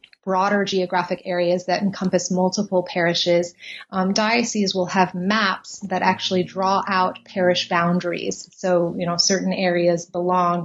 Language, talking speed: English, 135 wpm